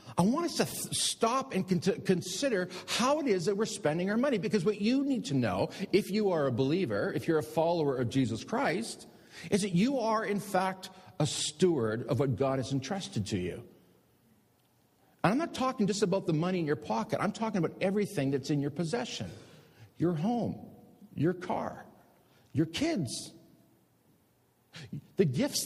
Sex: male